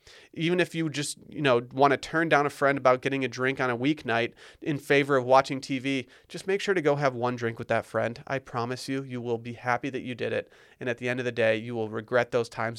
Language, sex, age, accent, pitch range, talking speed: English, male, 30-49, American, 125-155 Hz, 270 wpm